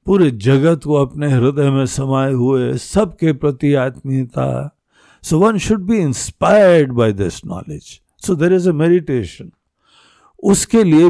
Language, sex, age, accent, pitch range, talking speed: Hindi, male, 60-79, native, 120-180 Hz, 125 wpm